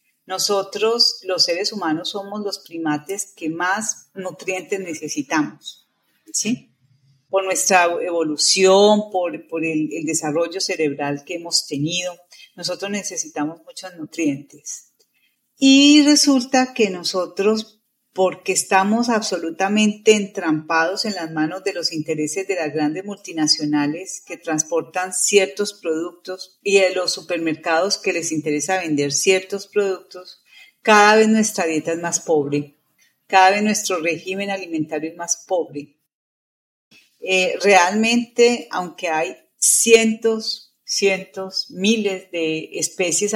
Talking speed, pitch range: 115 wpm, 160-210 Hz